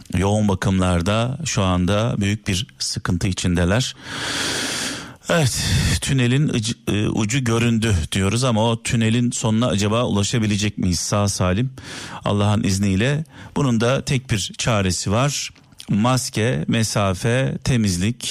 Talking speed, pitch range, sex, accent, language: 110 wpm, 105-135 Hz, male, native, Turkish